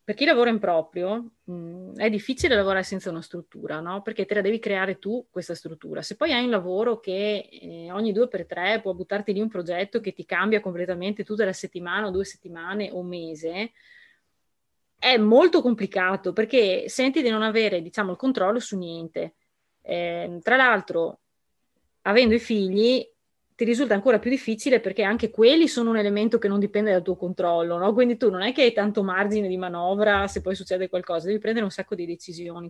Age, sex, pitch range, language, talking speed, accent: 20-39, female, 185-230 Hz, Italian, 195 wpm, native